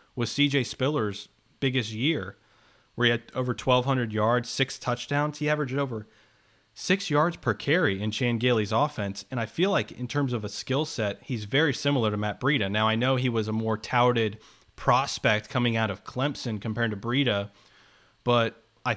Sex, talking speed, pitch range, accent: male, 185 wpm, 115-140 Hz, American